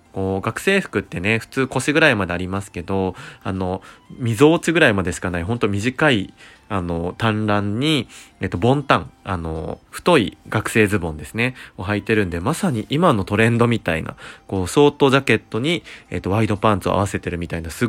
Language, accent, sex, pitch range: Japanese, native, male, 95-130 Hz